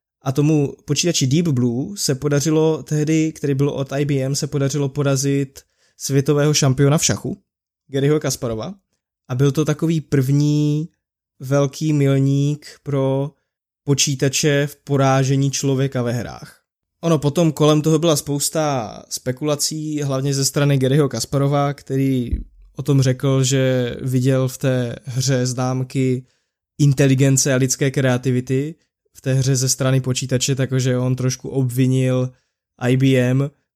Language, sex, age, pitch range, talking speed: Czech, male, 20-39, 130-145 Hz, 130 wpm